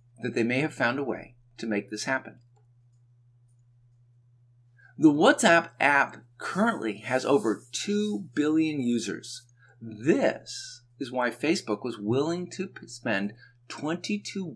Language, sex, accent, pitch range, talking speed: English, male, American, 120-140 Hz, 120 wpm